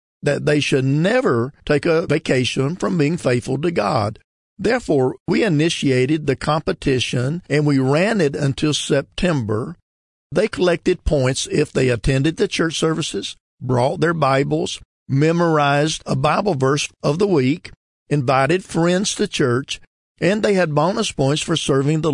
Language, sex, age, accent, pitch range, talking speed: English, male, 50-69, American, 130-160 Hz, 145 wpm